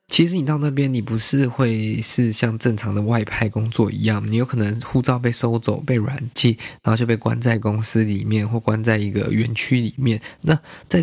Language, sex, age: Chinese, male, 20-39